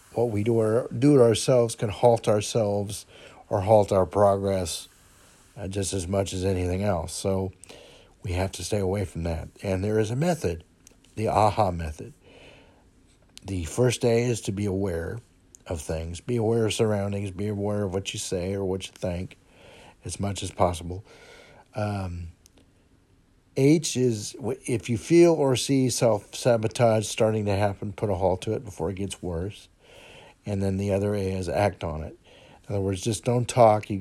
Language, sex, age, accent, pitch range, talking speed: English, male, 50-69, American, 95-115 Hz, 175 wpm